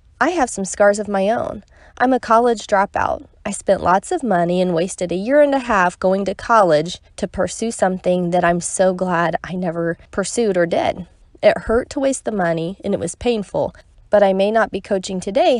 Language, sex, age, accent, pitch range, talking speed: English, female, 20-39, American, 175-240 Hz, 210 wpm